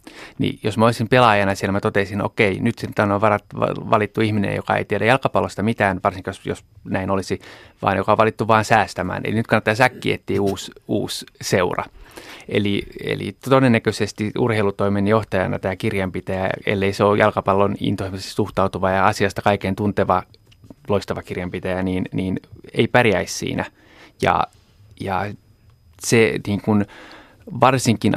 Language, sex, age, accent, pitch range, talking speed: Finnish, male, 30-49, native, 95-110 Hz, 145 wpm